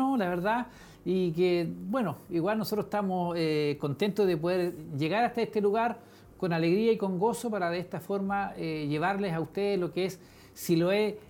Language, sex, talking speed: Spanish, male, 175 wpm